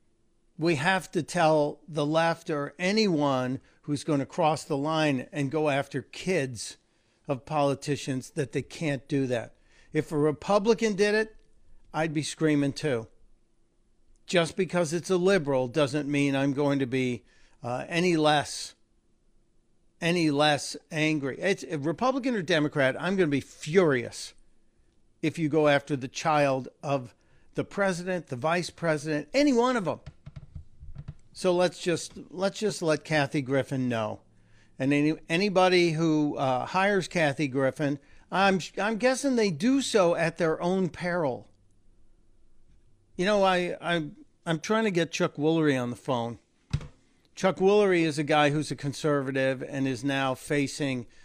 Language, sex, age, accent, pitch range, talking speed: English, male, 60-79, American, 130-170 Hz, 150 wpm